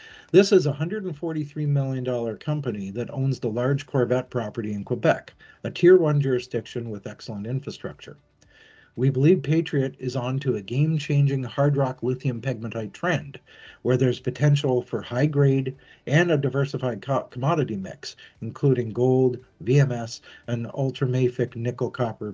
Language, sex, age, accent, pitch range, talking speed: English, male, 50-69, American, 120-140 Hz, 130 wpm